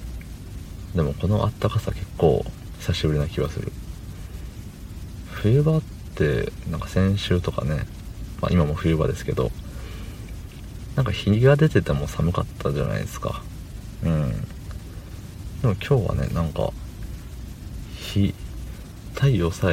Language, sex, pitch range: Japanese, male, 80-100 Hz